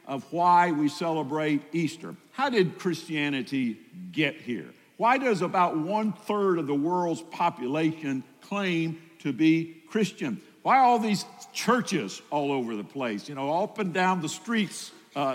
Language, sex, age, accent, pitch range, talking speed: English, male, 60-79, American, 150-205 Hz, 155 wpm